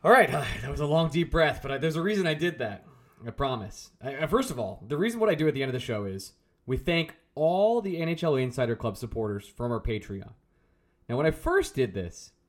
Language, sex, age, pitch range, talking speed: English, male, 20-39, 120-190 Hz, 235 wpm